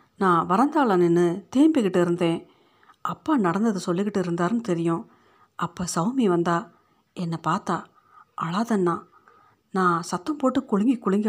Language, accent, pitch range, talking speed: Tamil, native, 170-210 Hz, 110 wpm